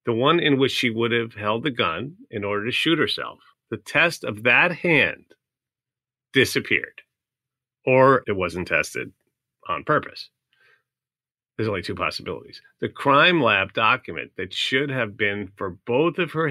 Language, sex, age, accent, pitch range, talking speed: English, male, 40-59, American, 110-170 Hz, 155 wpm